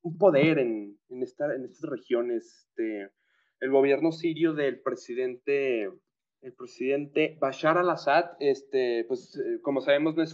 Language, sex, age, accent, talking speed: Spanish, male, 20-39, Mexican, 145 wpm